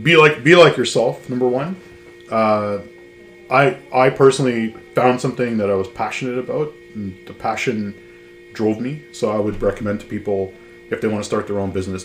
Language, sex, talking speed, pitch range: English, male, 185 wpm, 95-115 Hz